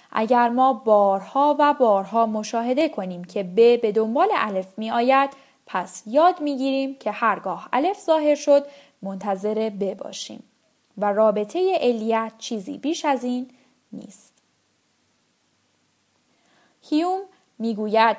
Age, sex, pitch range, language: 10-29, female, 210-285 Hz, Persian